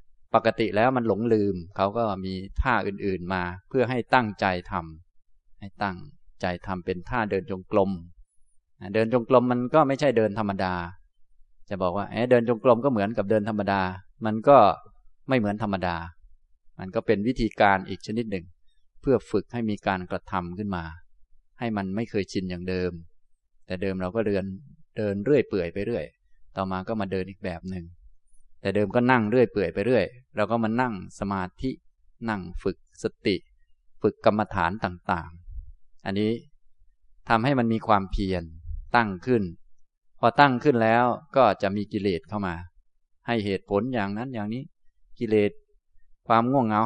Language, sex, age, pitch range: Thai, male, 20-39, 90-115 Hz